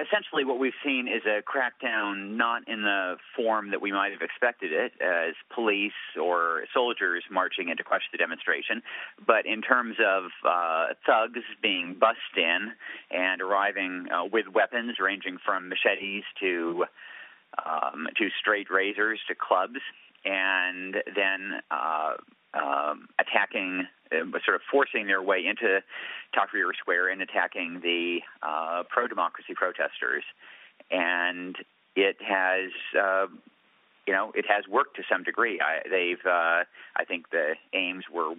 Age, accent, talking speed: 40-59, American, 140 wpm